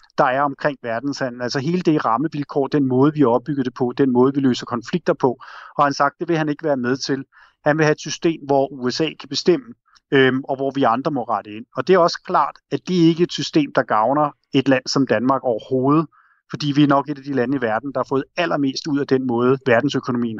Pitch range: 125-150 Hz